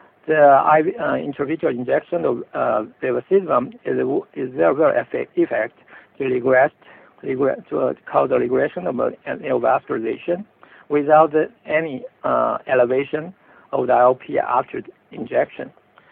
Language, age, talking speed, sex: English, 60-79, 145 wpm, male